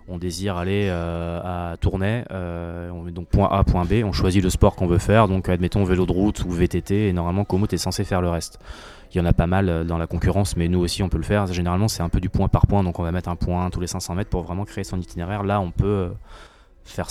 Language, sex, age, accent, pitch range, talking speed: French, male, 20-39, French, 85-100 Hz, 280 wpm